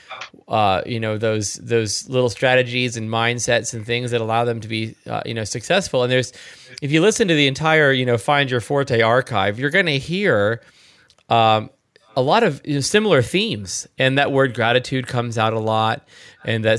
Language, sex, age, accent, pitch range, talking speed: English, male, 30-49, American, 115-145 Hz, 200 wpm